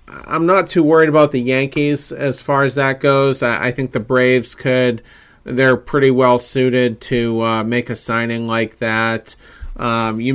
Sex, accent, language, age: male, American, English, 40-59